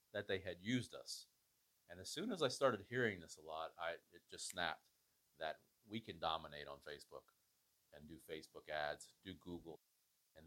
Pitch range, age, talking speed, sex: 85-105 Hz, 40-59, 185 wpm, male